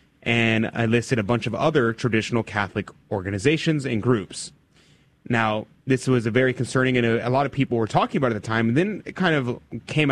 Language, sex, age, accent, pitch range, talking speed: English, male, 30-49, American, 110-145 Hz, 220 wpm